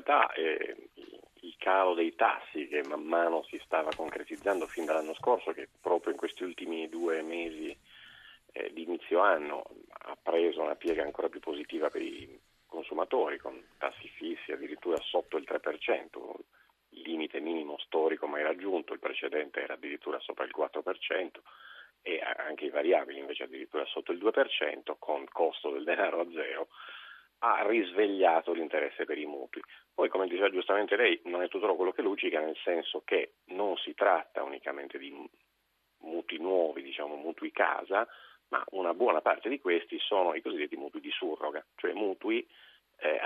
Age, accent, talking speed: 40-59, native, 160 wpm